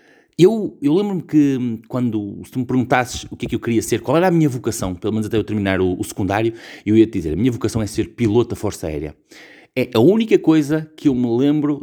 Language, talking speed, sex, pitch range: Portuguese, 250 wpm, male, 100-140 Hz